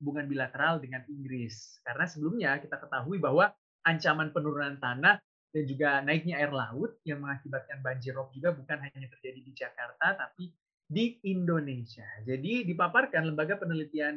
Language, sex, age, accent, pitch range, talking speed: Indonesian, male, 30-49, native, 135-175 Hz, 145 wpm